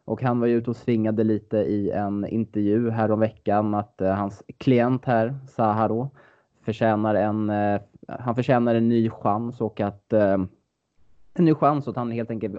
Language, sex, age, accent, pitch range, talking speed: Swedish, male, 20-39, Norwegian, 105-120 Hz, 180 wpm